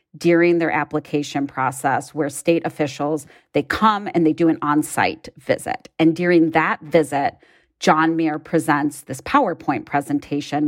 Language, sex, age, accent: English, female, 40-59, American